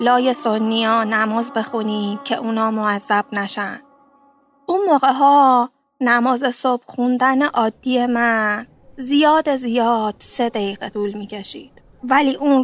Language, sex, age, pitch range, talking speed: Persian, female, 20-39, 215-245 Hz, 115 wpm